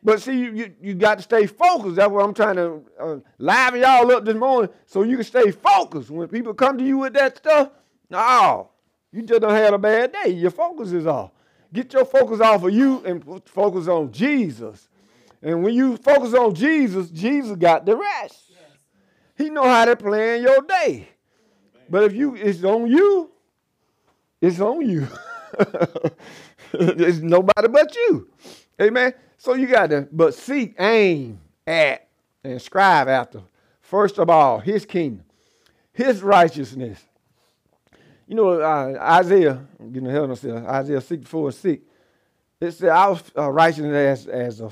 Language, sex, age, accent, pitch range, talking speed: English, male, 50-69, American, 160-255 Hz, 170 wpm